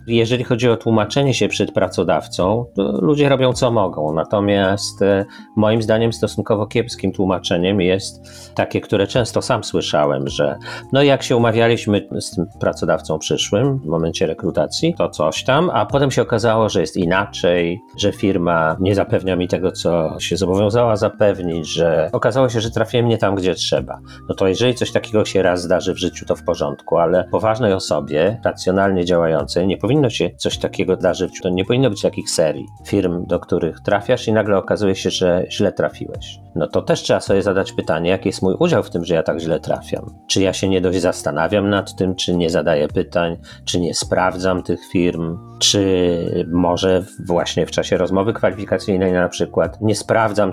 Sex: male